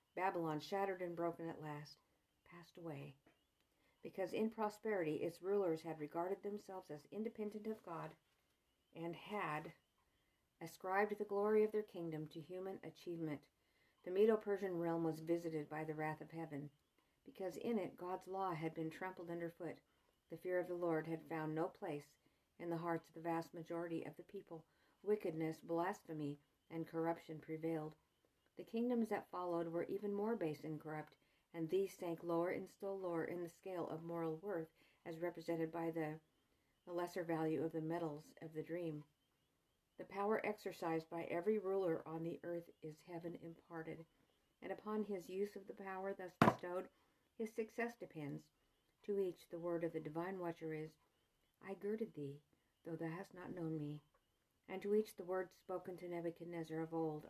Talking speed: 170 wpm